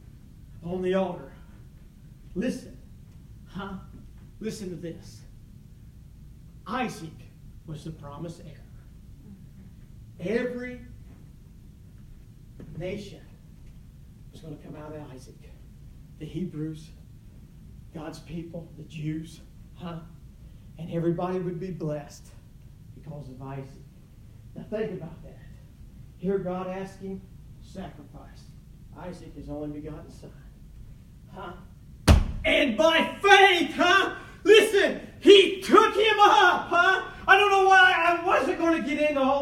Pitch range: 145-210 Hz